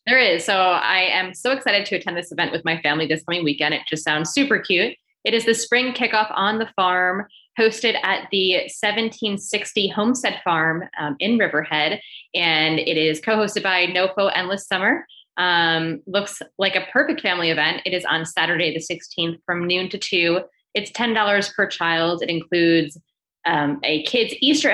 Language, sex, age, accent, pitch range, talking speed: English, female, 10-29, American, 165-210 Hz, 180 wpm